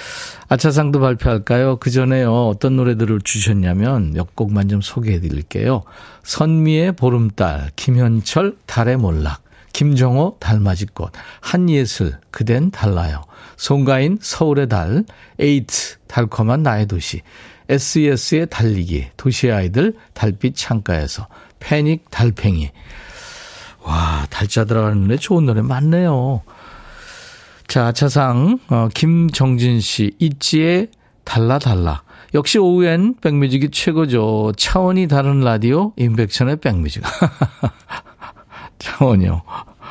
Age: 50-69